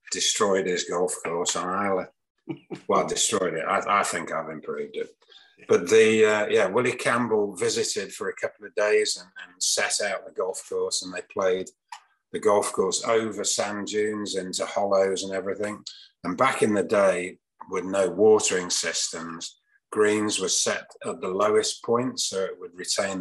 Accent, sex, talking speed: British, male, 175 wpm